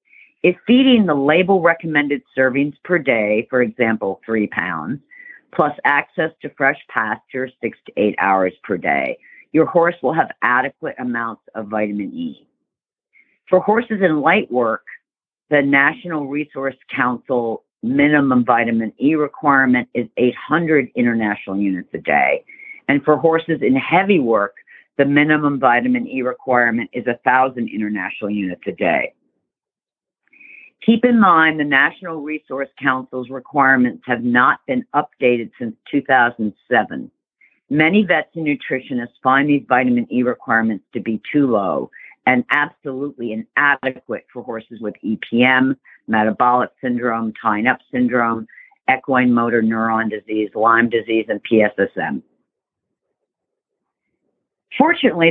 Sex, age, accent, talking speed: female, 50-69, American, 125 wpm